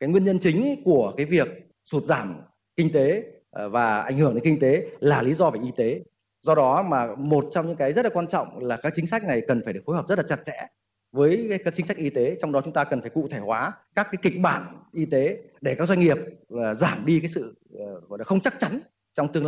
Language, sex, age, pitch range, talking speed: Vietnamese, male, 30-49, 125-170 Hz, 250 wpm